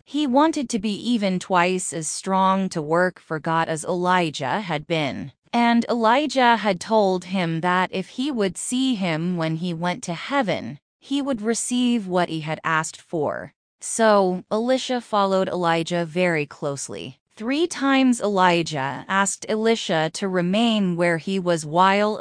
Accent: American